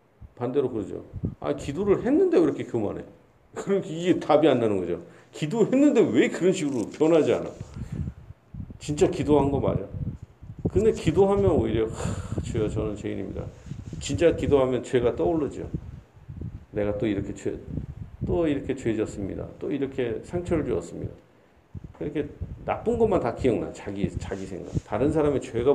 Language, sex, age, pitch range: Korean, male, 40-59, 100-135 Hz